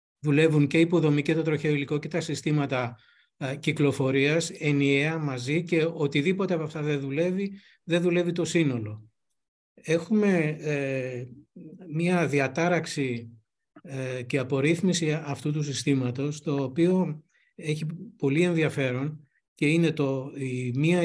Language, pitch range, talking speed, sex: Greek, 135-165 Hz, 115 wpm, male